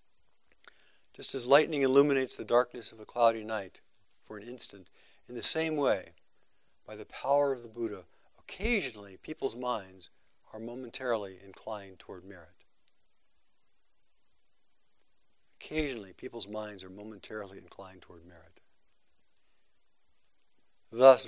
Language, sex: English, male